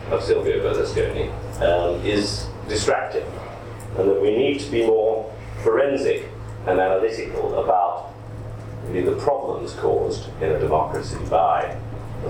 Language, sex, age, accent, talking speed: English, male, 30-49, British, 125 wpm